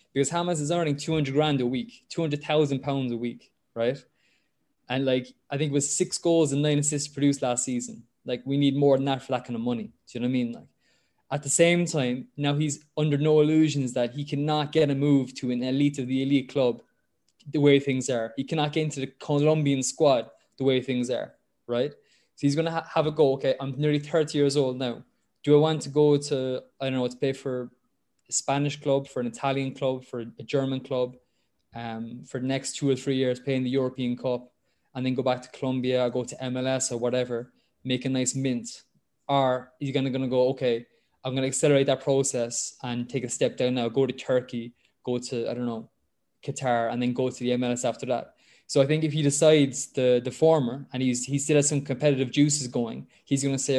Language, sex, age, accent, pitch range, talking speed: English, male, 20-39, Irish, 125-145 Hz, 225 wpm